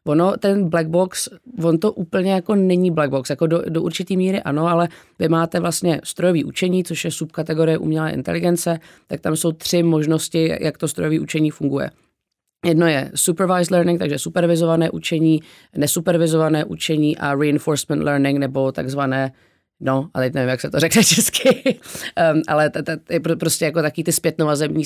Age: 20-39